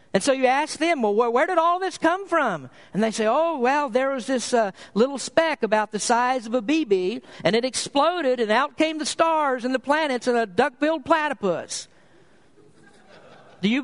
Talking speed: 200 wpm